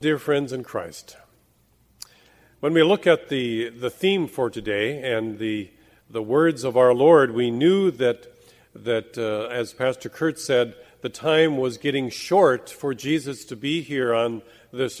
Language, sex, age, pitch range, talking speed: English, male, 40-59, 120-155 Hz, 165 wpm